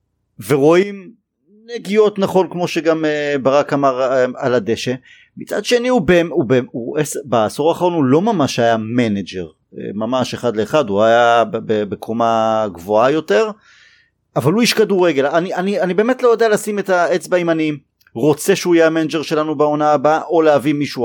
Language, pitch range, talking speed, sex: Hebrew, 120-170 Hz, 165 wpm, male